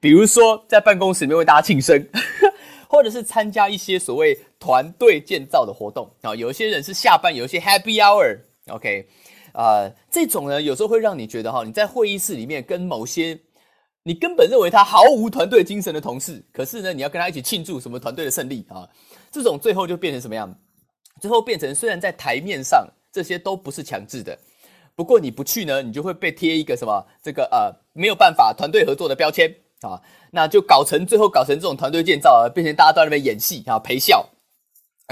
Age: 30-49